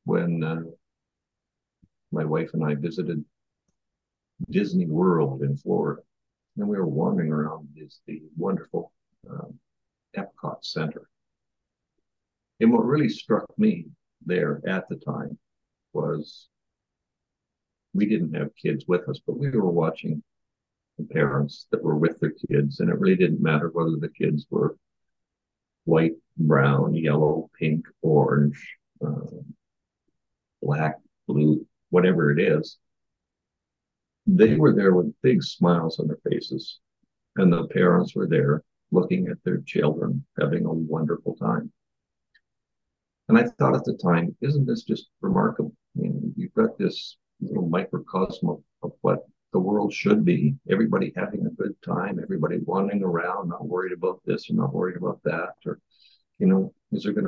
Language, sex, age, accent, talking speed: English, male, 50-69, American, 145 wpm